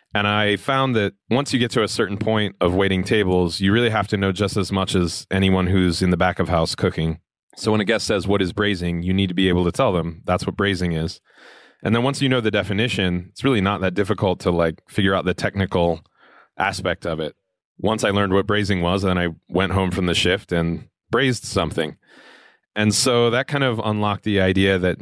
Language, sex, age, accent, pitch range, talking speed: English, male, 30-49, American, 90-105 Hz, 235 wpm